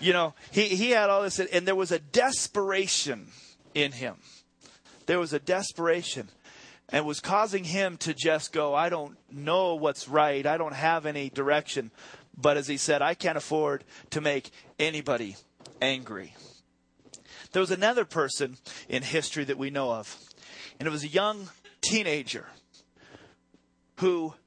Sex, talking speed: male, 155 wpm